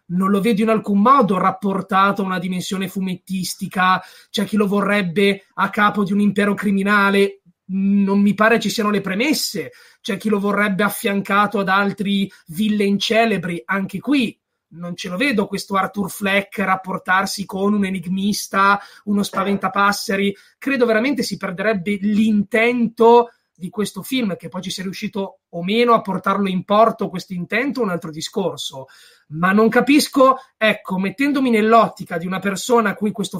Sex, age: male, 30-49